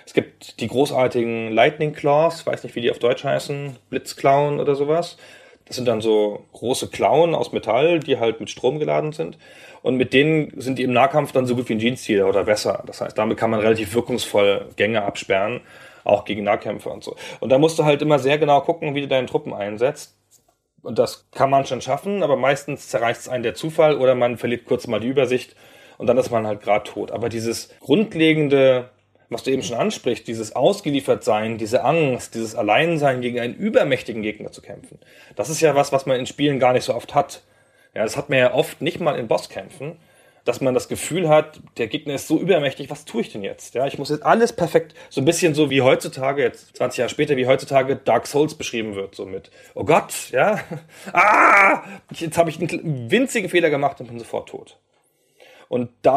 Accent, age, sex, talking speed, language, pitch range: German, 30-49, male, 210 wpm, German, 120-160 Hz